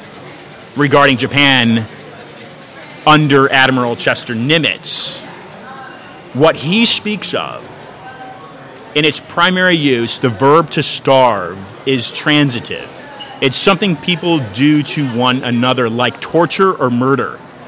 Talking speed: 105 wpm